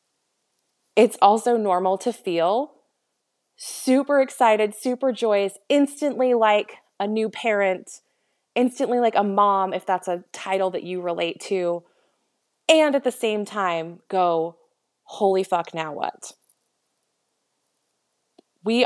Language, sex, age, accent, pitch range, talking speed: English, female, 20-39, American, 170-230 Hz, 120 wpm